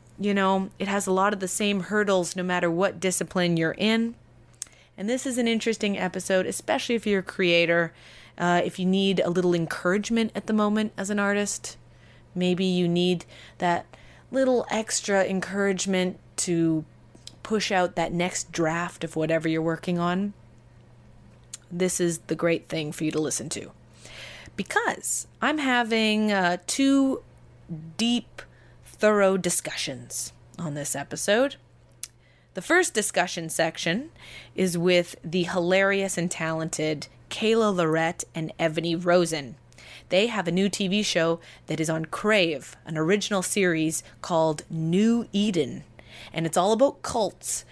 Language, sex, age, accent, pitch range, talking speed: English, female, 30-49, American, 165-200 Hz, 145 wpm